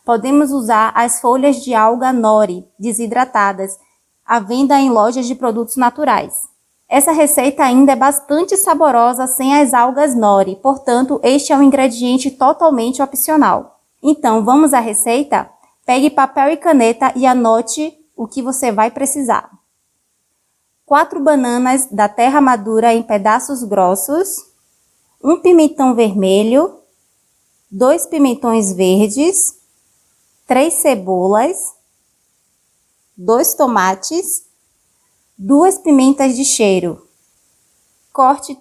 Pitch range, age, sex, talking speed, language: 230-285 Hz, 20-39, female, 110 wpm, Portuguese